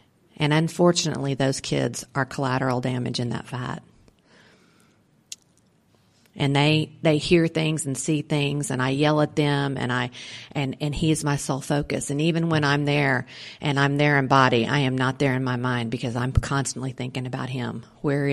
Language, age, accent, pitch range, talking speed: English, 40-59, American, 130-150 Hz, 185 wpm